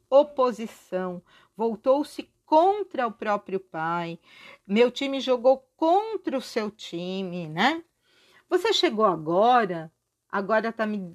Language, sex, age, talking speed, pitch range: Portuguese, female, 50-69, 110 wpm, 185-285 Hz